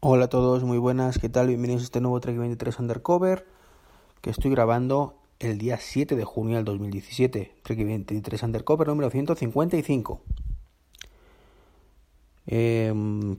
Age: 30-49